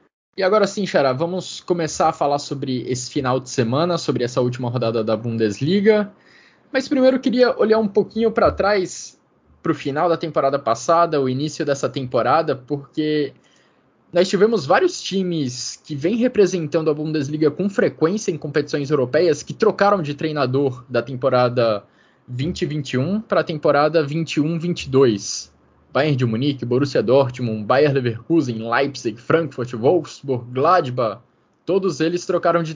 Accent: Brazilian